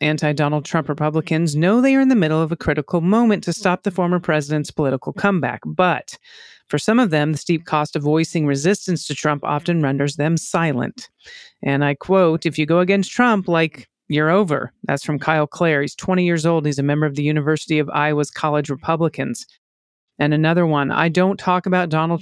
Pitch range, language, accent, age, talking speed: 150-180 Hz, English, American, 40-59, 200 wpm